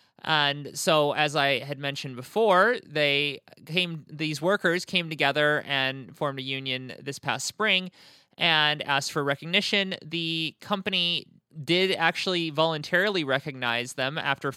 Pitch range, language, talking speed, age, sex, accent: 140-175 Hz, English, 130 wpm, 20-39, male, American